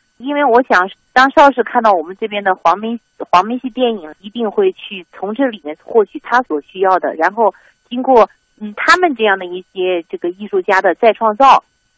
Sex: female